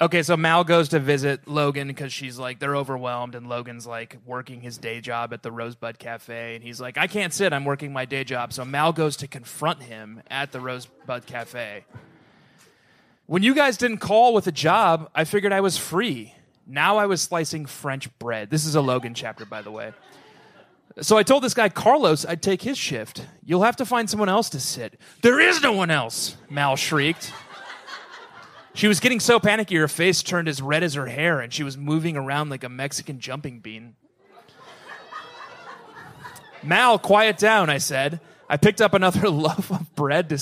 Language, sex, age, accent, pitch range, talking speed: English, male, 30-49, American, 135-185 Hz, 195 wpm